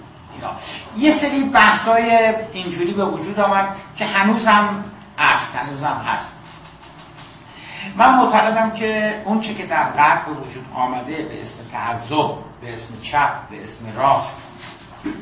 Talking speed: 130 wpm